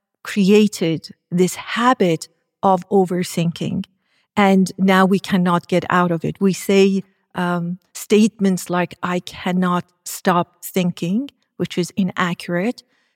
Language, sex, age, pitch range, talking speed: English, female, 50-69, 175-195 Hz, 115 wpm